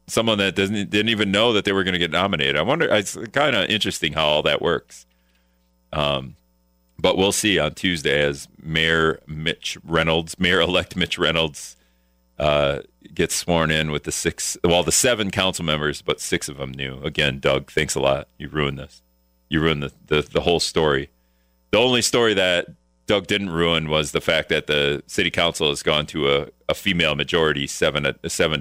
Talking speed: 190 wpm